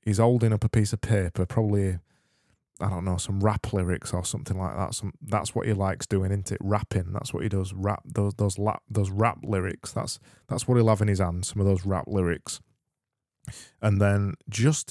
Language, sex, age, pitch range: English, male, 20-39, 95-120 Hz